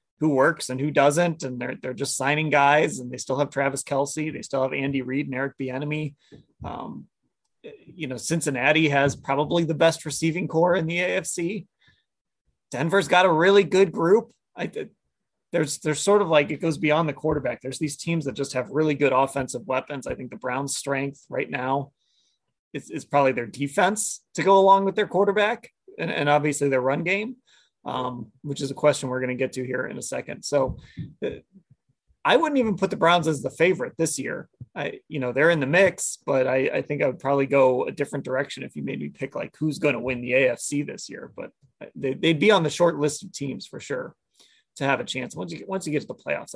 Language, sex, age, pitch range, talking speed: English, male, 30-49, 135-175 Hz, 225 wpm